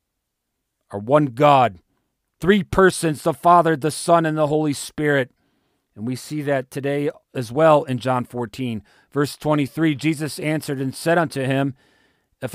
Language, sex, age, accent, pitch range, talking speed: English, male, 40-59, American, 135-195 Hz, 155 wpm